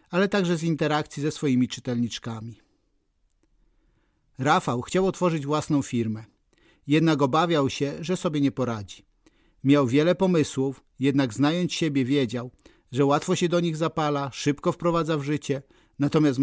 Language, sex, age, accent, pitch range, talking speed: Polish, male, 50-69, native, 130-160 Hz, 135 wpm